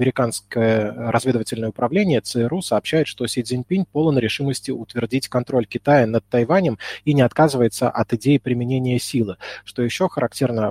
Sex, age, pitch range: male, 20-39, 115-140 Hz